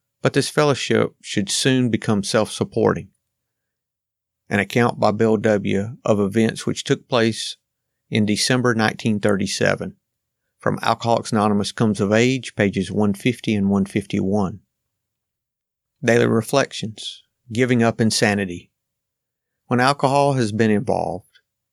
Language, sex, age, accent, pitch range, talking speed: English, male, 50-69, American, 100-115 Hz, 110 wpm